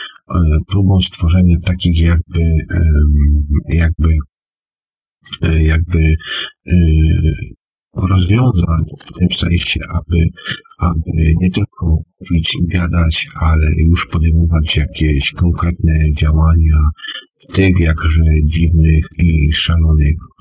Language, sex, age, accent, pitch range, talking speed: Polish, male, 50-69, native, 80-90 Hz, 85 wpm